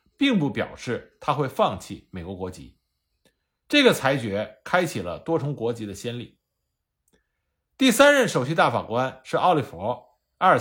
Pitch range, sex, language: 120-200 Hz, male, Chinese